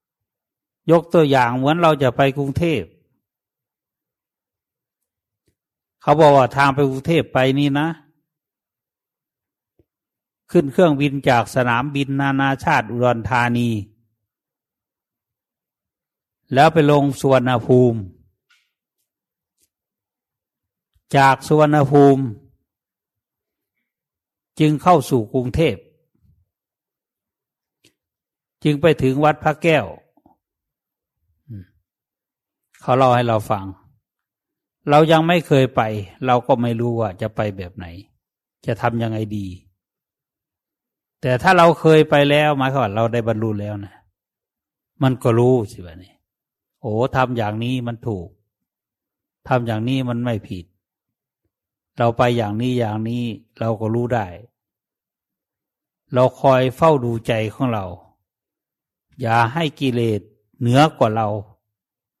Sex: male